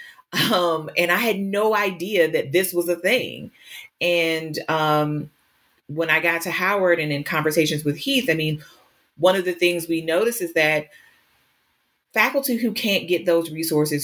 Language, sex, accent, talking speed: English, female, American, 165 wpm